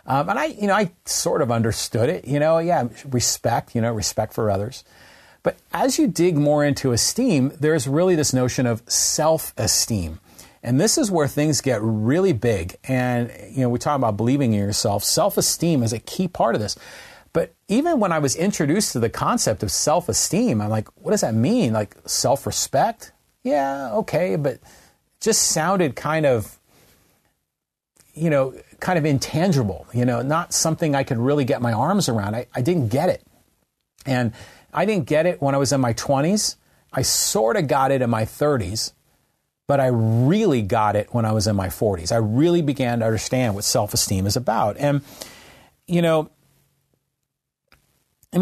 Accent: American